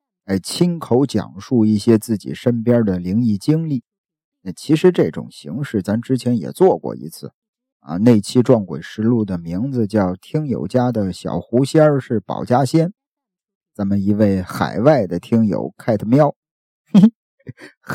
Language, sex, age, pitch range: Chinese, male, 50-69, 105-155 Hz